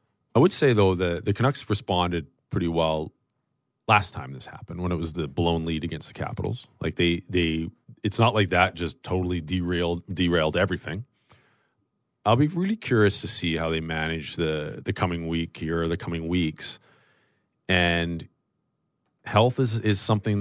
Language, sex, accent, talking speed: English, male, American, 170 wpm